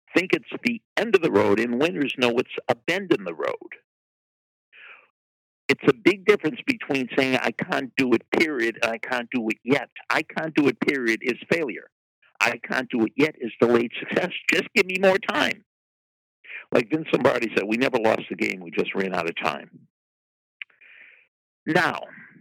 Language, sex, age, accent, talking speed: English, male, 50-69, American, 185 wpm